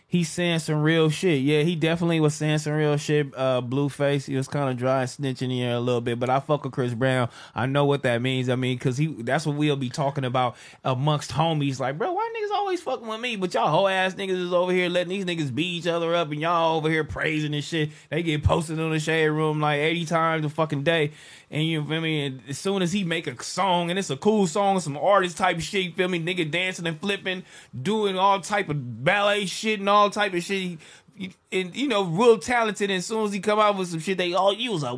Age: 20-39